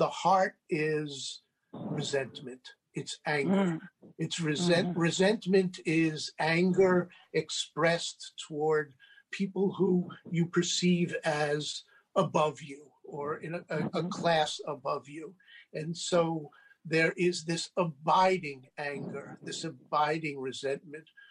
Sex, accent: male, American